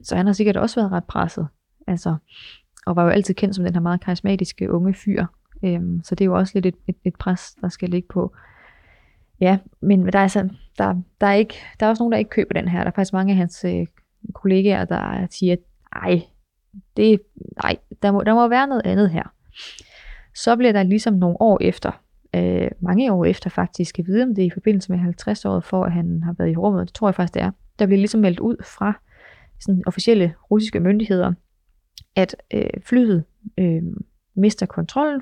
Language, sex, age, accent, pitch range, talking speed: Danish, female, 20-39, native, 180-205 Hz, 210 wpm